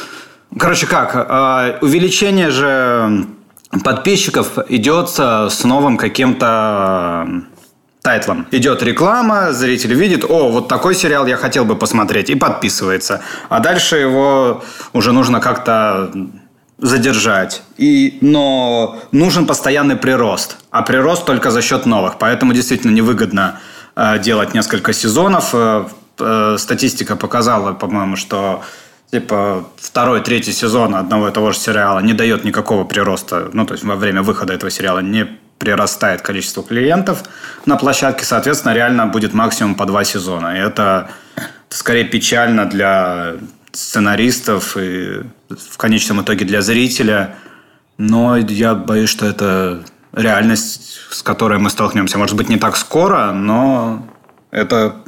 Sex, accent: male, native